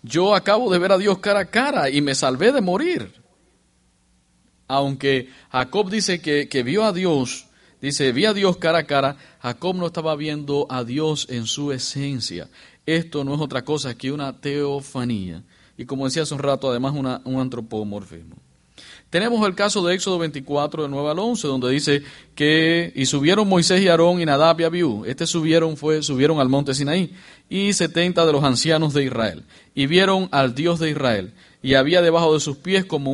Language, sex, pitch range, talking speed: English, male, 130-170 Hz, 190 wpm